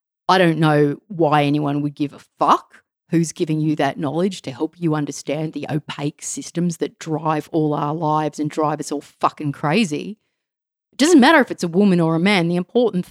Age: 40-59